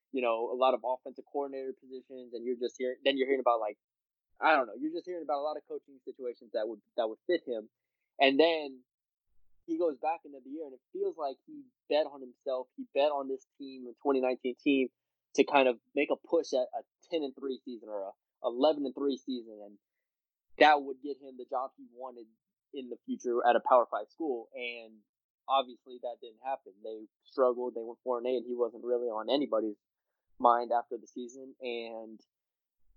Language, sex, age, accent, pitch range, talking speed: English, male, 20-39, American, 125-150 Hz, 210 wpm